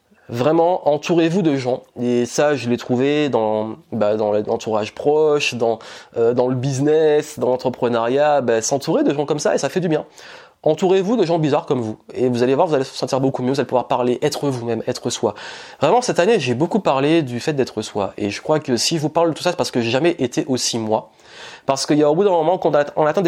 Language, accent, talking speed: French, French, 250 wpm